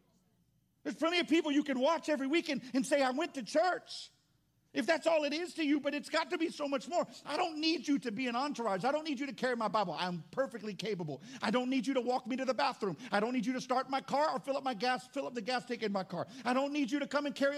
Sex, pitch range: male, 215-285 Hz